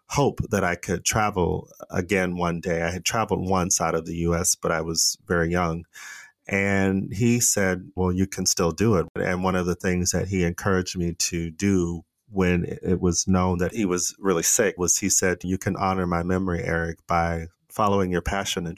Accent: American